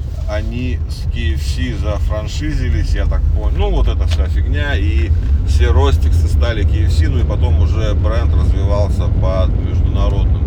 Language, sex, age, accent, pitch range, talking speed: Russian, male, 30-49, native, 80-90 Hz, 145 wpm